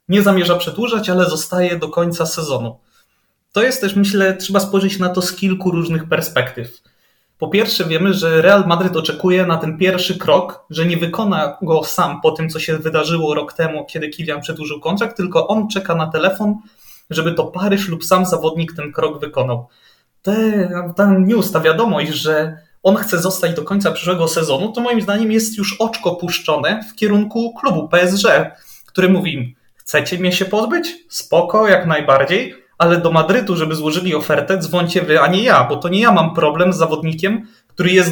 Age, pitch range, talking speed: 20-39, 160-200 Hz, 180 wpm